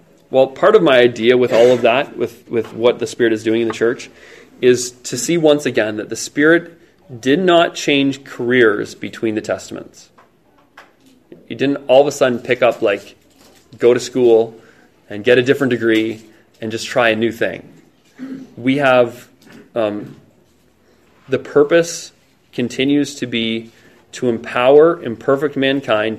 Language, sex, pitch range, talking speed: English, male, 115-140 Hz, 160 wpm